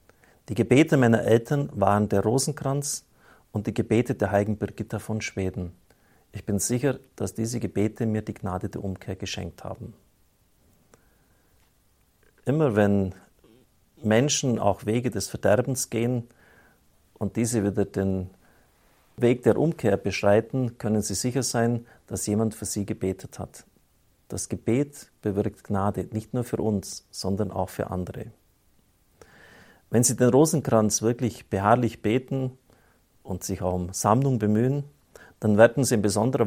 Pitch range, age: 100-120 Hz, 50-69